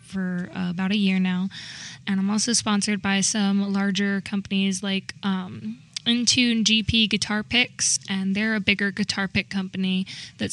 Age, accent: 10-29, American